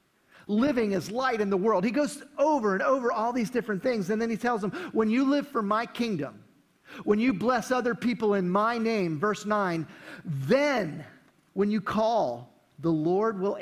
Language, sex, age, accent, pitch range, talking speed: English, male, 40-59, American, 145-210 Hz, 190 wpm